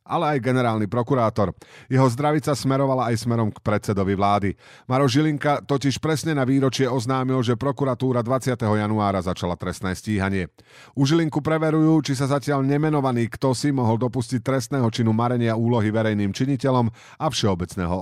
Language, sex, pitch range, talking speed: Slovak, male, 105-135 Hz, 150 wpm